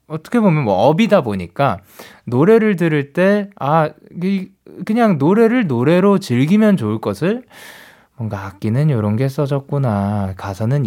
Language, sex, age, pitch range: Korean, male, 20-39, 100-170 Hz